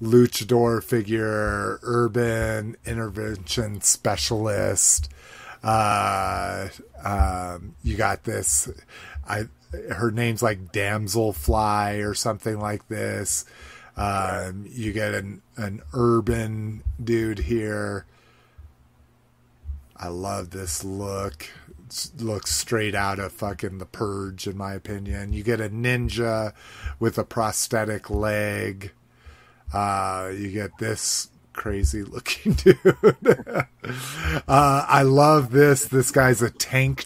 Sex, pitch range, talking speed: male, 100-125 Hz, 105 wpm